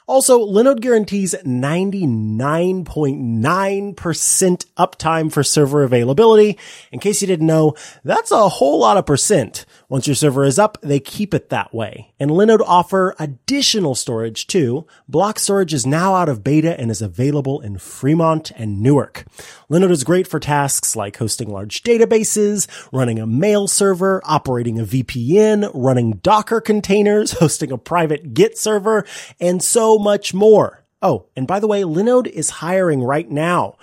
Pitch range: 130-190 Hz